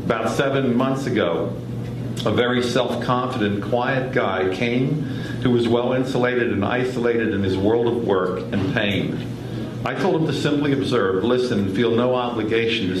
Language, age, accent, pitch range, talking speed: English, 50-69, American, 105-125 Hz, 155 wpm